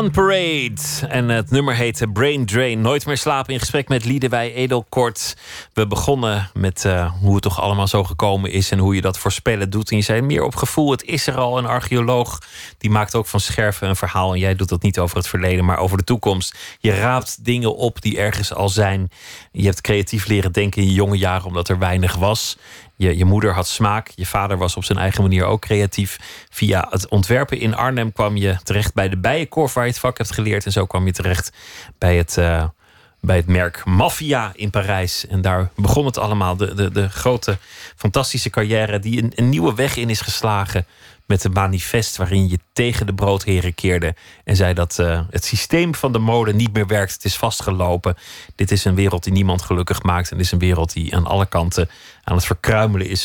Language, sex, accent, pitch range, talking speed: Dutch, male, Dutch, 95-115 Hz, 215 wpm